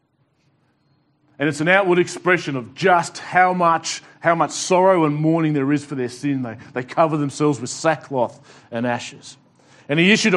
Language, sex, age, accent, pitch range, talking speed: English, male, 40-59, Australian, 145-180 Hz, 175 wpm